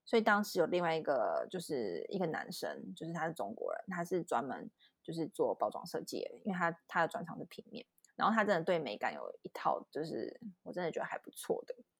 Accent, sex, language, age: native, female, Chinese, 20-39